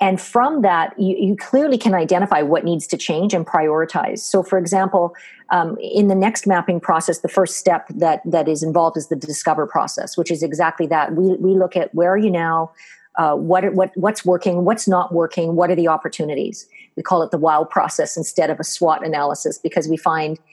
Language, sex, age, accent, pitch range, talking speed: English, female, 50-69, American, 165-195 Hz, 215 wpm